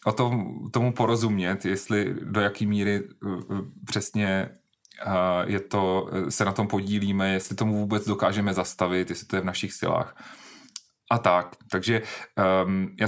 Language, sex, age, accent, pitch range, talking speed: Czech, male, 30-49, native, 105-125 Hz, 150 wpm